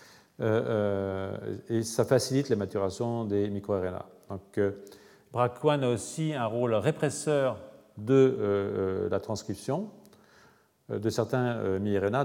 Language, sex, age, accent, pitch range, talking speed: French, male, 40-59, French, 100-125 Hz, 125 wpm